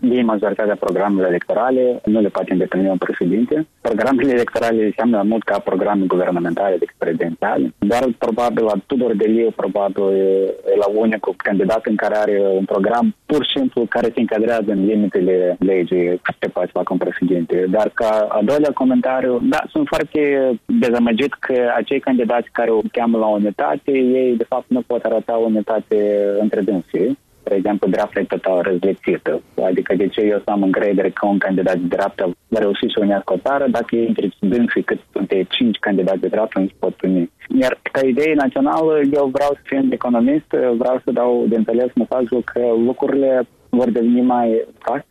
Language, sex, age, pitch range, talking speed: Romanian, male, 20-39, 100-125 Hz, 170 wpm